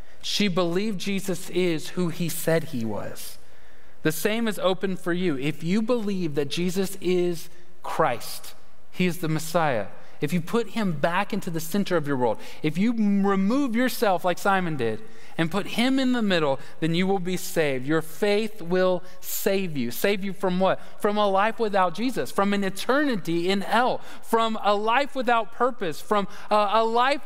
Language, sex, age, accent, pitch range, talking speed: English, male, 30-49, American, 160-210 Hz, 185 wpm